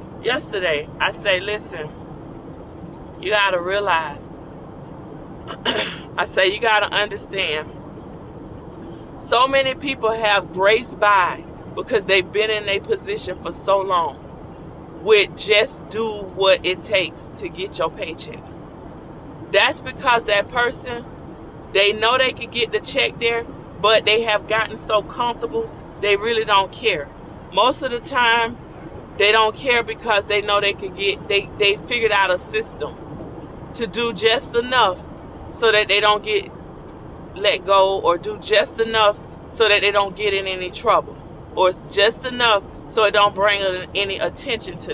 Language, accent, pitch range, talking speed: English, American, 200-240 Hz, 150 wpm